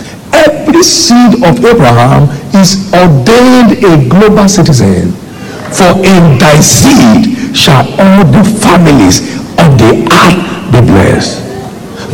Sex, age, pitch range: male, 60-79, 135-215 Hz